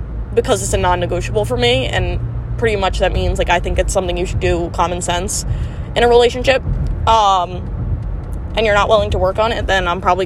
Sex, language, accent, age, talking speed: female, English, American, 20-39, 210 wpm